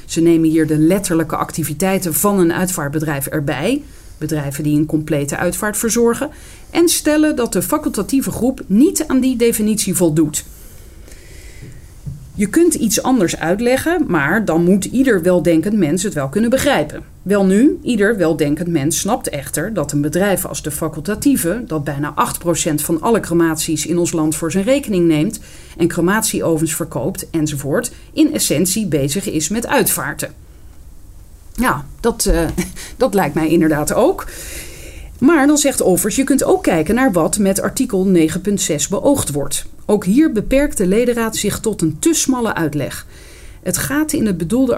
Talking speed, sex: 155 wpm, female